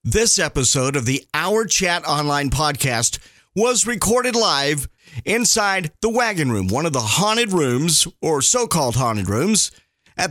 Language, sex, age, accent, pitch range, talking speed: English, male, 50-69, American, 135-185 Hz, 145 wpm